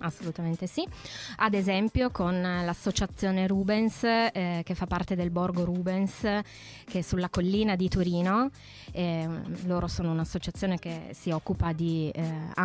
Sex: female